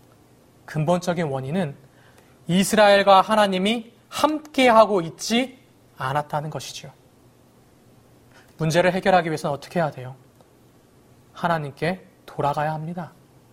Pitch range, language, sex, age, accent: 140-225 Hz, Korean, male, 30-49, native